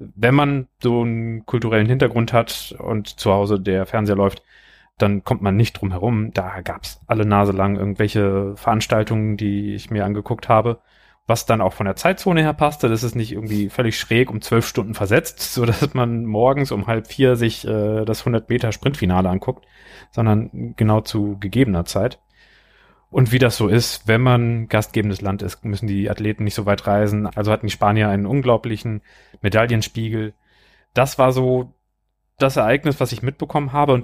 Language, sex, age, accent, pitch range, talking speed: German, male, 30-49, German, 105-125 Hz, 180 wpm